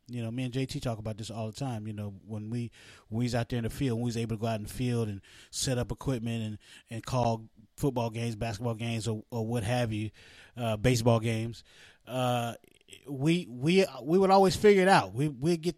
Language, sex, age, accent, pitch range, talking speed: English, male, 20-39, American, 115-155 Hz, 240 wpm